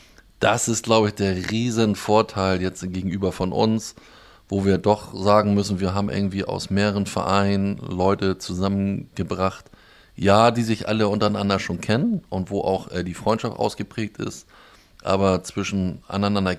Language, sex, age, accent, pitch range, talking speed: German, male, 20-39, German, 95-110 Hz, 150 wpm